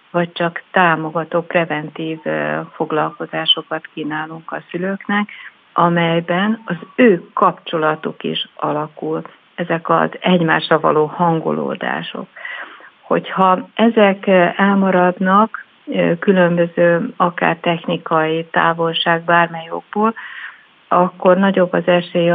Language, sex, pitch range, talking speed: Hungarian, female, 160-180 Hz, 85 wpm